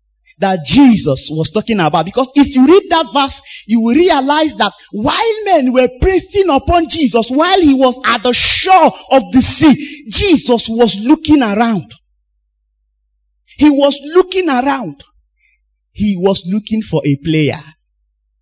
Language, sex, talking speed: English, male, 145 wpm